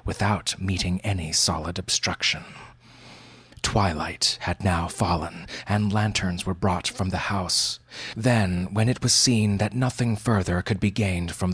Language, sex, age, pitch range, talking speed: English, male, 30-49, 95-115 Hz, 145 wpm